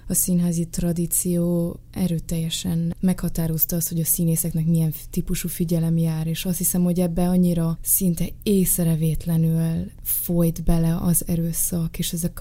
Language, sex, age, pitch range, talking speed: Hungarian, female, 20-39, 165-185 Hz, 130 wpm